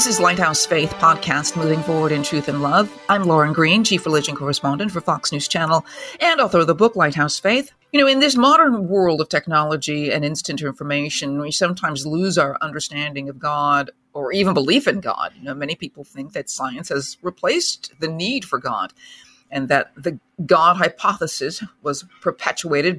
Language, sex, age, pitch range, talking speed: English, female, 50-69, 150-200 Hz, 185 wpm